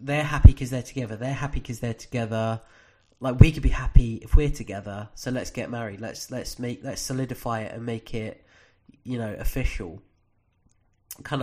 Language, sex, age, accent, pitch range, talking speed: English, male, 20-39, British, 110-130 Hz, 185 wpm